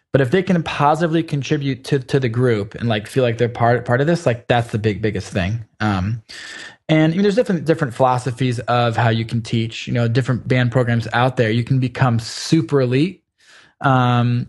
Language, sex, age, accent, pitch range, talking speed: English, male, 20-39, American, 115-140 Hz, 210 wpm